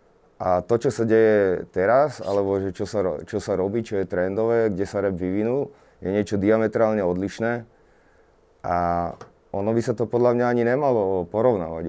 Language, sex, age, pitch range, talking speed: Slovak, male, 30-49, 95-115 Hz, 165 wpm